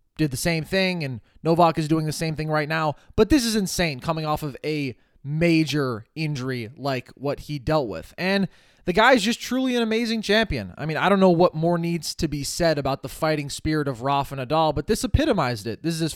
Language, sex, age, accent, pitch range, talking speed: English, male, 20-39, American, 145-185 Hz, 230 wpm